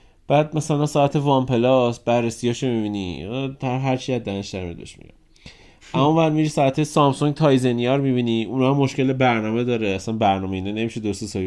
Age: 30-49